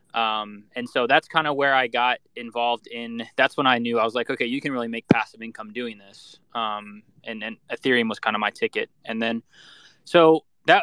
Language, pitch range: English, 115-150 Hz